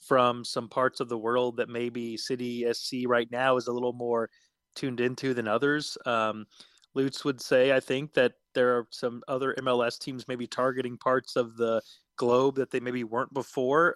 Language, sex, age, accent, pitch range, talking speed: English, male, 20-39, American, 120-135 Hz, 185 wpm